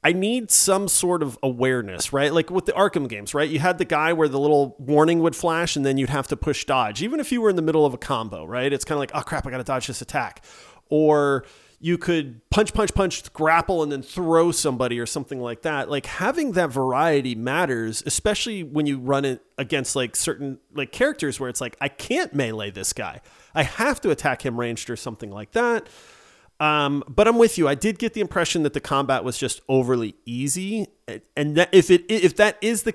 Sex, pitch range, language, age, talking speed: male, 130-180 Hz, English, 30-49, 230 wpm